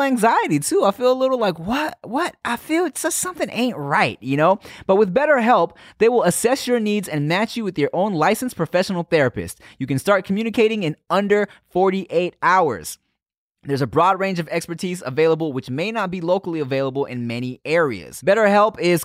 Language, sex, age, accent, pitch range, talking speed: English, male, 20-39, American, 155-230 Hz, 195 wpm